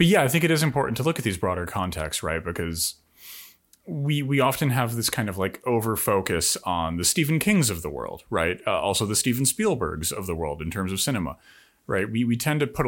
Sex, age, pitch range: male, 30-49, 90-125 Hz